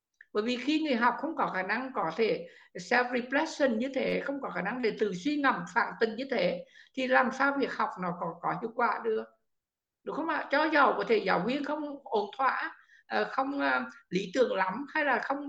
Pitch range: 200-265 Hz